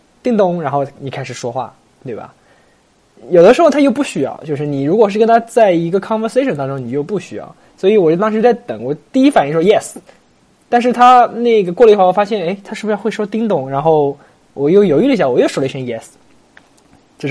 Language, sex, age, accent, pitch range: English, male, 20-39, Chinese, 125-195 Hz